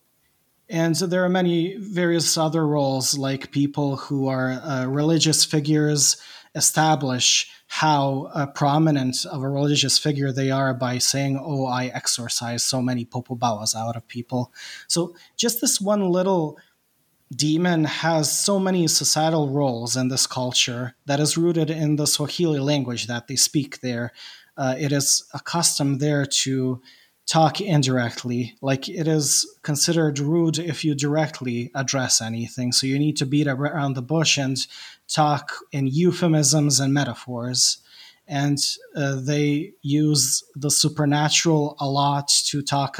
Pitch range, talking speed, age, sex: 130-155 Hz, 145 wpm, 20-39, male